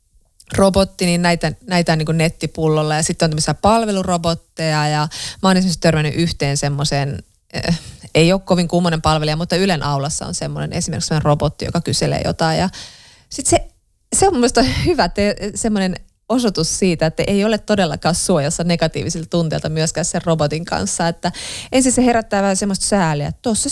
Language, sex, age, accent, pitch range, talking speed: Finnish, female, 30-49, native, 150-200 Hz, 155 wpm